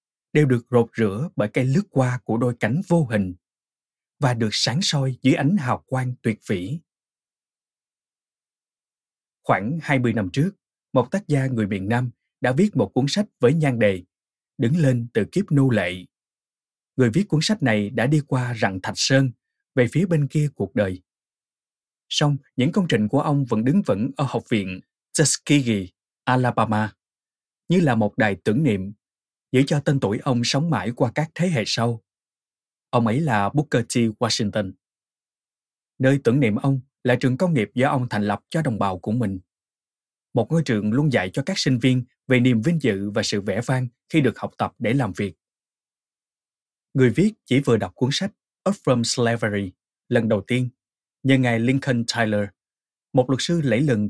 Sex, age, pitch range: male, 20-39, 110-145 Hz